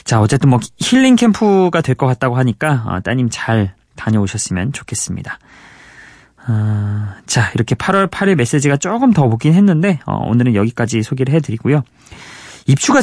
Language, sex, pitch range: Korean, male, 110-165 Hz